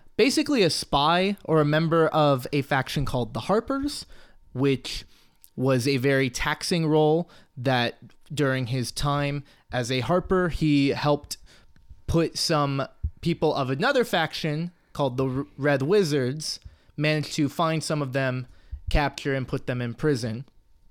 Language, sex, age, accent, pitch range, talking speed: English, male, 20-39, American, 125-160 Hz, 140 wpm